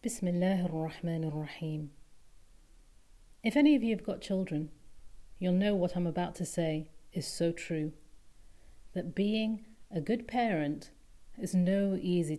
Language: English